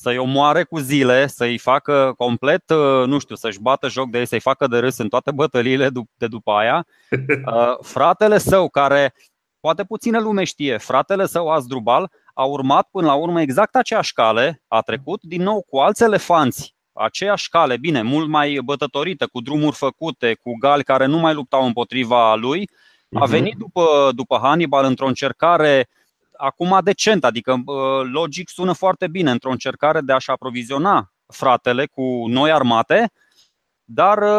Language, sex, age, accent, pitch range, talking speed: Romanian, male, 20-39, native, 130-175 Hz, 155 wpm